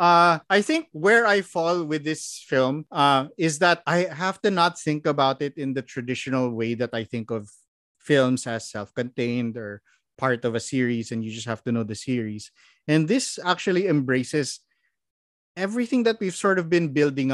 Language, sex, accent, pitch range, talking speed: English, male, Filipino, 125-160 Hz, 185 wpm